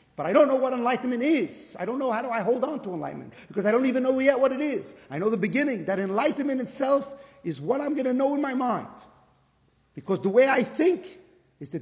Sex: male